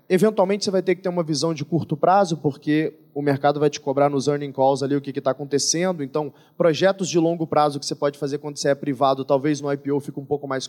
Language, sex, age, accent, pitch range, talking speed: Portuguese, male, 20-39, Brazilian, 155-195 Hz, 260 wpm